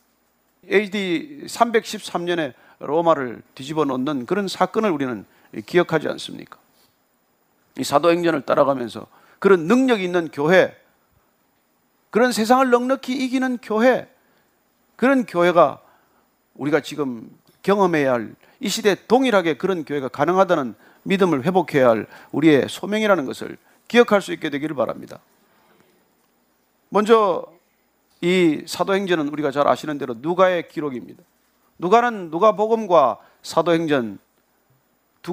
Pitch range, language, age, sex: 155-225 Hz, Korean, 40-59, male